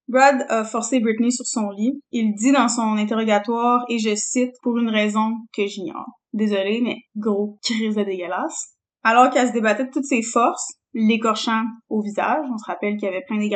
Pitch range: 210-245 Hz